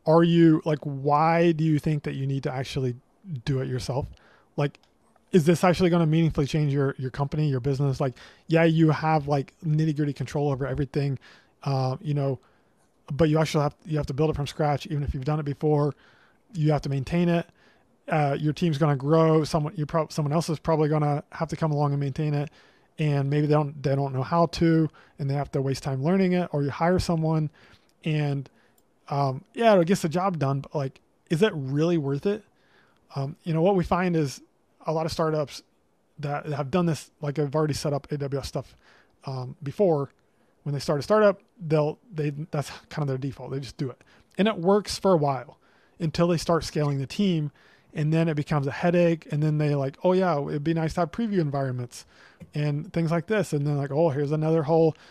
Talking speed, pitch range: 220 wpm, 140-165 Hz